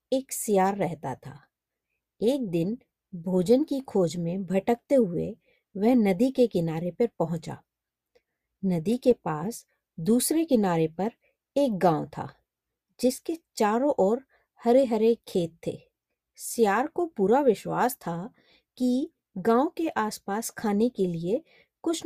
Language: Hindi